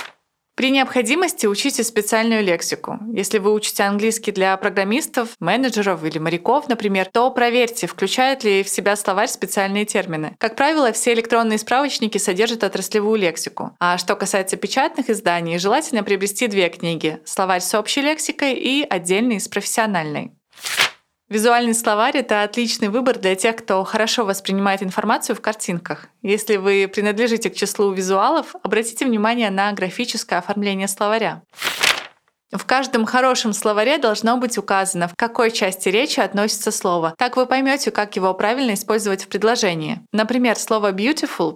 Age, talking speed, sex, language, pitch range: 20-39, 145 wpm, female, Russian, 195-235 Hz